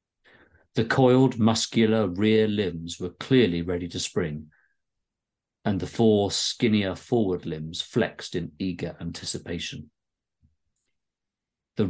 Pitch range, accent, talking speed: 90-120 Hz, British, 105 wpm